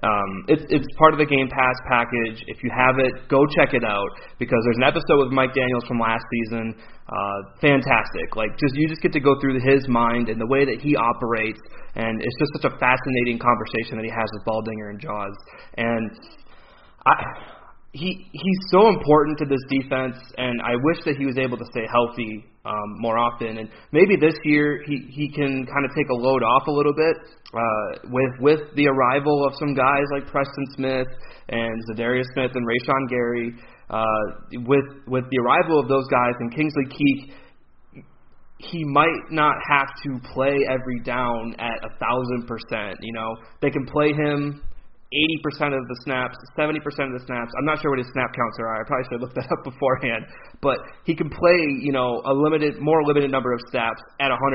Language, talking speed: English, 195 wpm